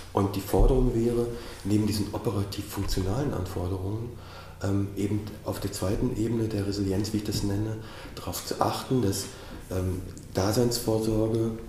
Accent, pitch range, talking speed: German, 95-110 Hz, 125 wpm